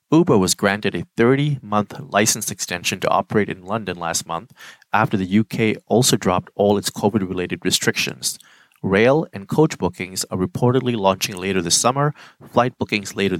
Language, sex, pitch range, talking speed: English, male, 95-125 Hz, 165 wpm